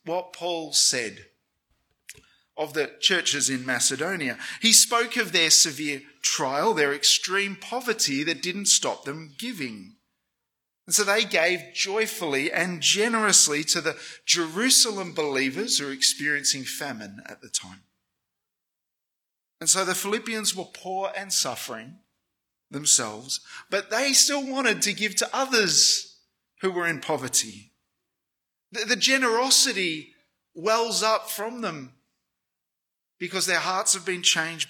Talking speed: 125 wpm